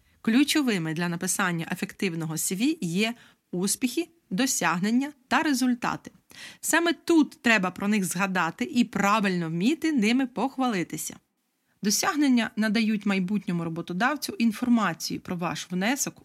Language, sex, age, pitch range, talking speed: Ukrainian, female, 30-49, 185-260 Hz, 105 wpm